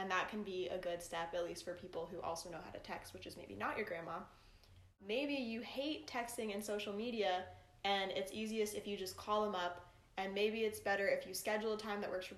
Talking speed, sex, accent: 245 wpm, female, American